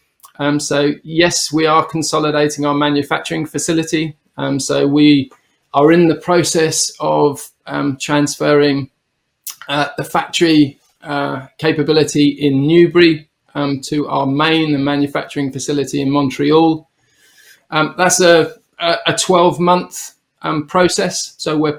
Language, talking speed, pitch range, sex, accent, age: English, 120 wpm, 145-160 Hz, male, British, 20-39